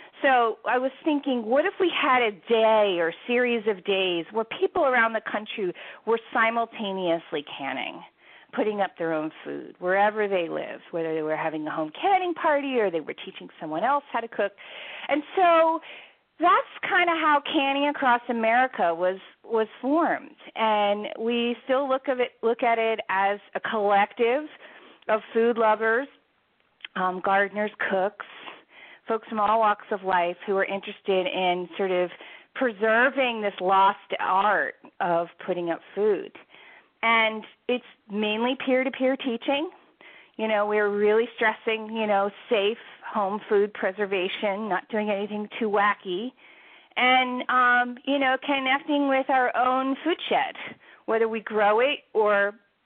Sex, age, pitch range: female, 40-59, 205-260 Hz